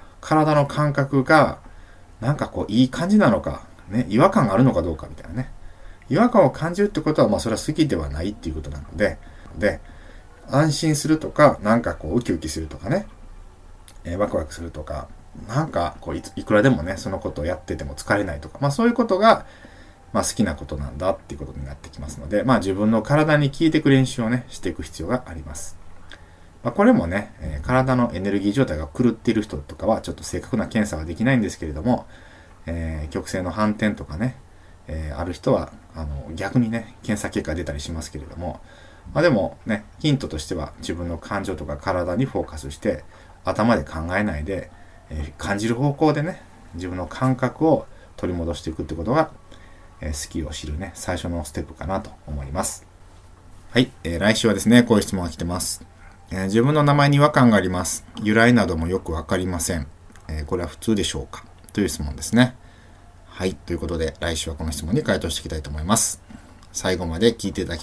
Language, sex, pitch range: Japanese, male, 80-115 Hz